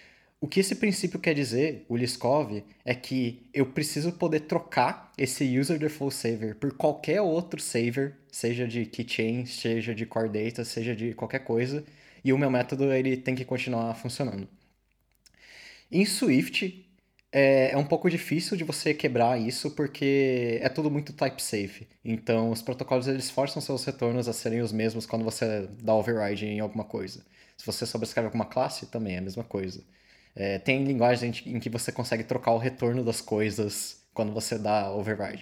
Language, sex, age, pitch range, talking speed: Portuguese, male, 20-39, 110-135 Hz, 170 wpm